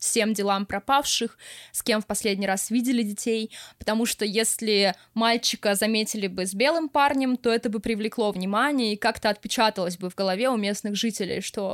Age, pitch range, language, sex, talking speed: 20-39, 205-235 Hz, Russian, female, 175 wpm